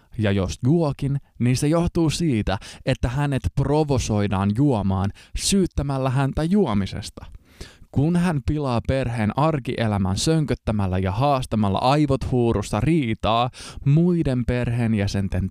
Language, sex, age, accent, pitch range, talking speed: Finnish, male, 20-39, native, 100-140 Hz, 105 wpm